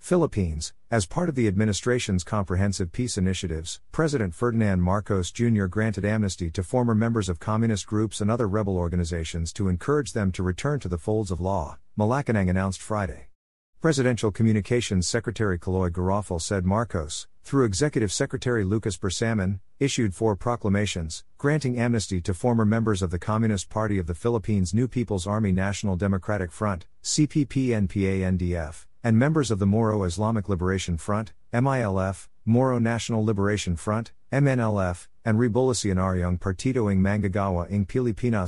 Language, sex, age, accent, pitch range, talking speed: English, male, 50-69, American, 95-115 Hz, 145 wpm